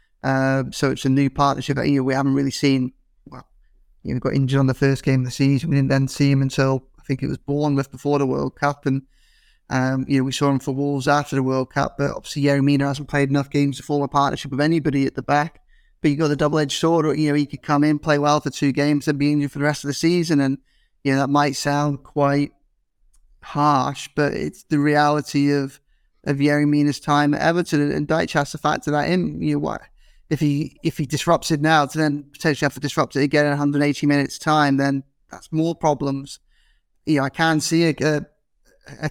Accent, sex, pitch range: British, male, 140-150 Hz